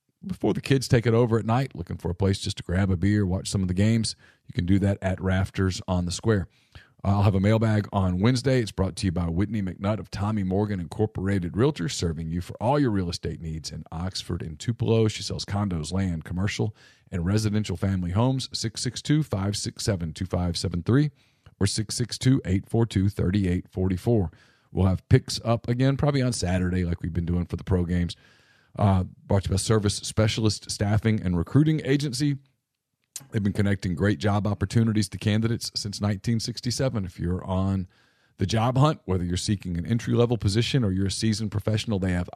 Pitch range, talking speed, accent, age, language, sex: 95-115 Hz, 185 wpm, American, 40-59, English, male